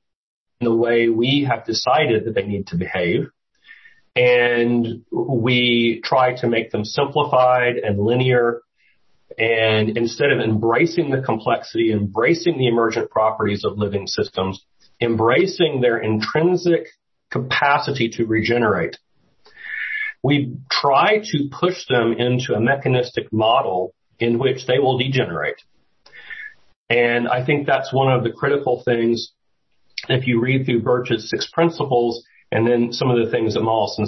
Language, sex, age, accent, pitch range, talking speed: English, male, 40-59, American, 115-130 Hz, 135 wpm